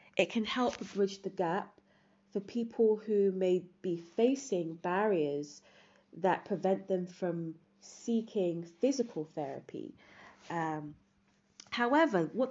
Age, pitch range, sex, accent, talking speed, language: 30-49, 170-220 Hz, female, British, 110 wpm, English